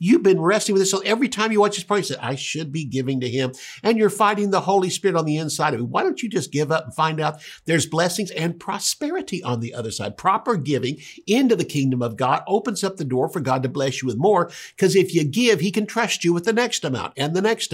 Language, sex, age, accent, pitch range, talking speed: English, male, 50-69, American, 130-185 Hz, 275 wpm